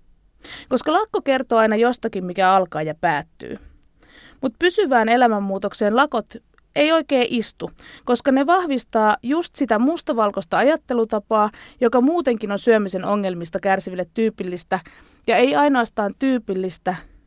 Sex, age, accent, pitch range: female, 20-39, native, 195-265 Hz